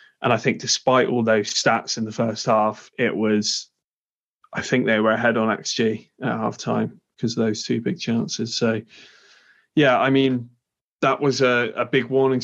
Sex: male